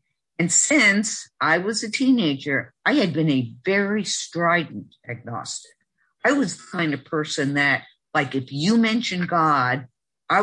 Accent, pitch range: American, 130-175 Hz